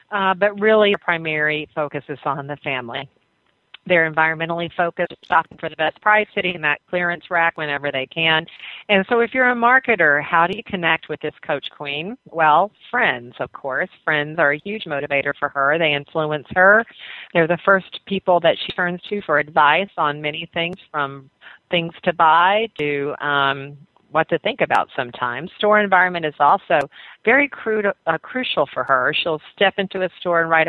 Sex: female